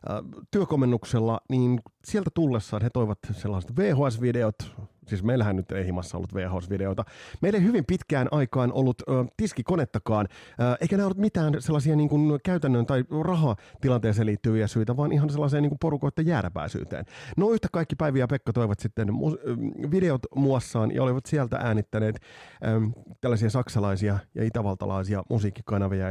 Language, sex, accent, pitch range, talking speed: Finnish, male, native, 105-150 Hz, 135 wpm